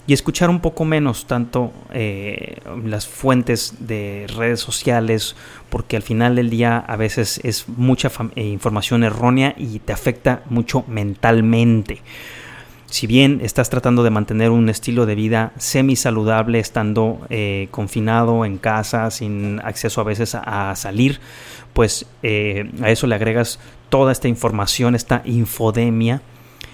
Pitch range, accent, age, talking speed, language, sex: 110-125 Hz, Mexican, 30-49, 140 wpm, Spanish, male